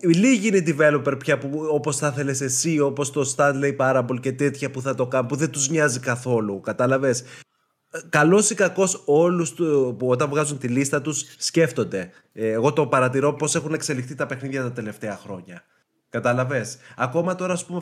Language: Greek